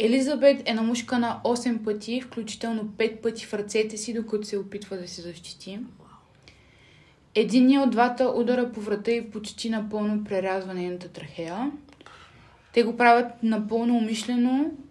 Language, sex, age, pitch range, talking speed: Bulgarian, female, 20-39, 175-235 Hz, 145 wpm